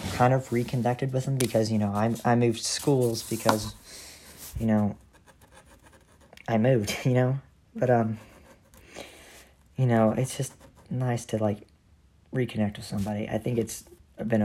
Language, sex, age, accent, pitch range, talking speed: English, male, 40-59, American, 100-120 Hz, 145 wpm